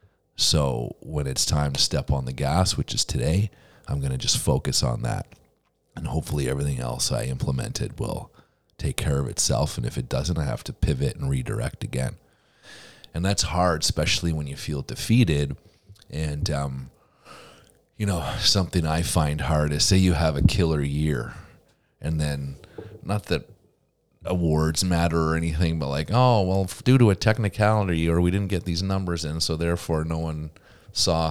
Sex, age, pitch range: male, 40-59, 75-100 Hz